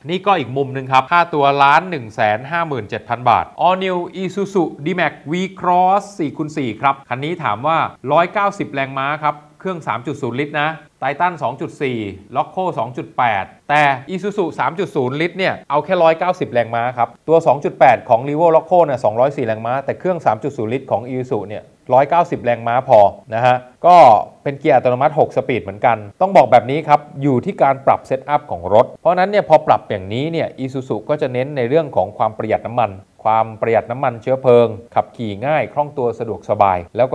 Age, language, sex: 30-49, Thai, male